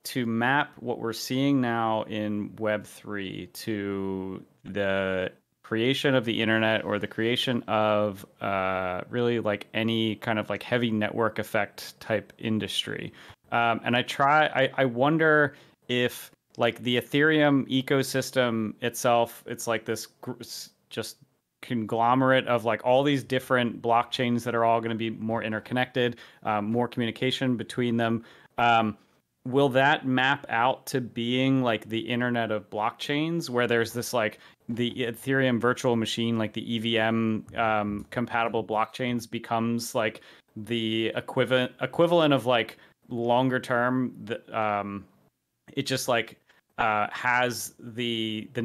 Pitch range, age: 110-130 Hz, 30-49